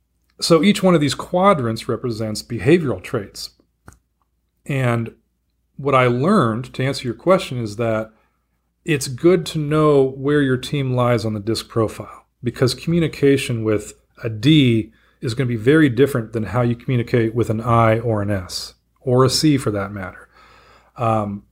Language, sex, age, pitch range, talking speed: English, male, 40-59, 110-140 Hz, 165 wpm